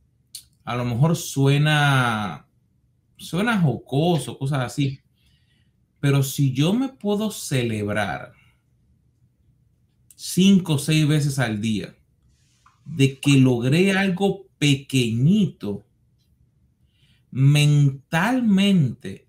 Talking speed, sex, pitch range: 80 wpm, male, 125-160 Hz